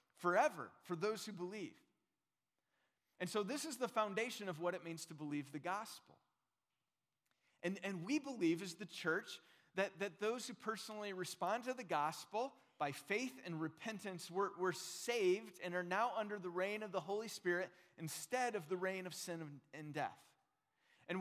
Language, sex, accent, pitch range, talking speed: English, male, American, 165-220 Hz, 175 wpm